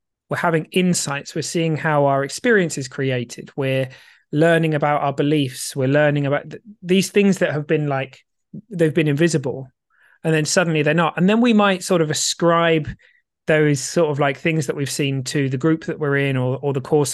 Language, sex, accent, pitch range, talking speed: English, male, British, 135-170 Hz, 205 wpm